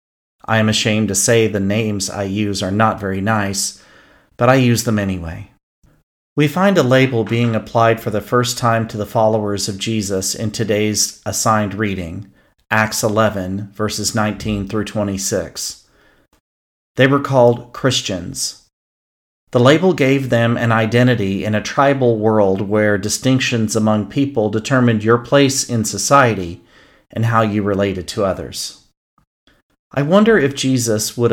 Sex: male